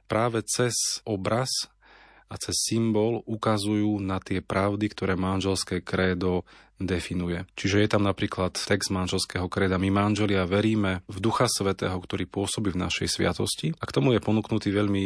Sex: male